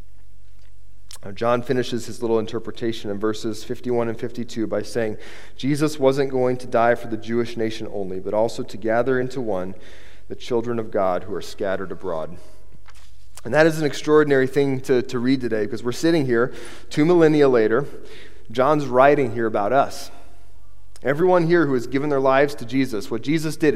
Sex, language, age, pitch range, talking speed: male, English, 30-49, 95-135 Hz, 180 wpm